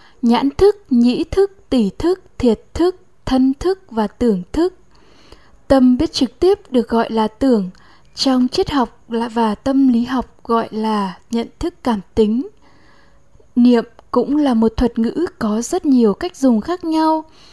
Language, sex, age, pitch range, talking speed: Vietnamese, female, 10-29, 230-280 Hz, 160 wpm